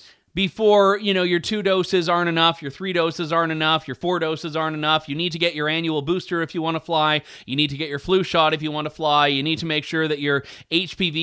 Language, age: English, 30-49